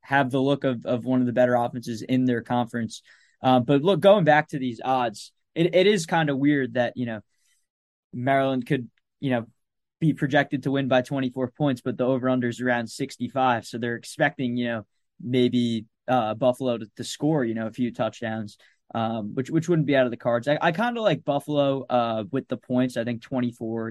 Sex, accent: male, American